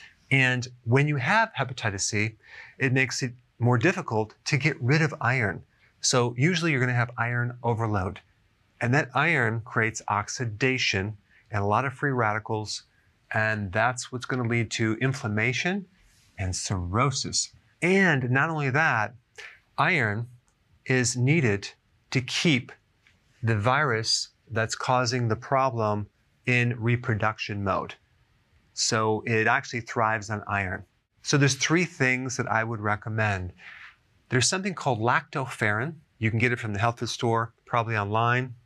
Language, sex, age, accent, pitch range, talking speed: English, male, 30-49, American, 110-130 Hz, 145 wpm